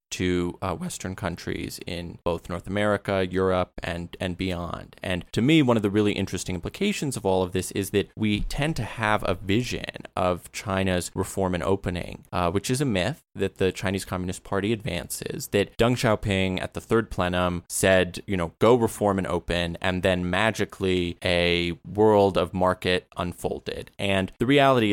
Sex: male